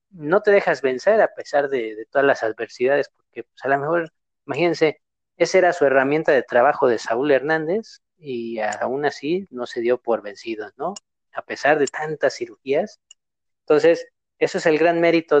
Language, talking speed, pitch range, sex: Spanish, 175 wpm, 130-170 Hz, male